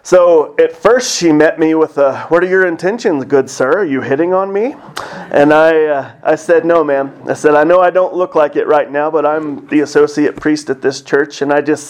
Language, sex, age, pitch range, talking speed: English, male, 30-49, 140-165 Hz, 240 wpm